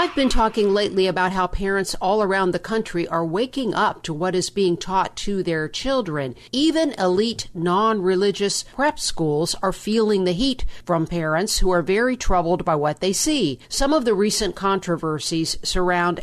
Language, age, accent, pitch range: English, 50-69, American, 170-205 Hz